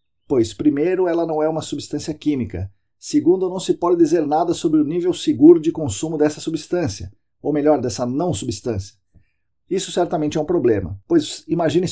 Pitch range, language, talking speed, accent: 115-170 Hz, Portuguese, 170 wpm, Brazilian